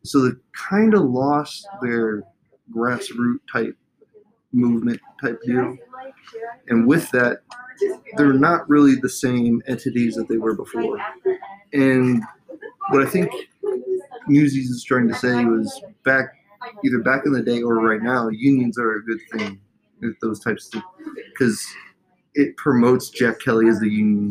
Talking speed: 145 wpm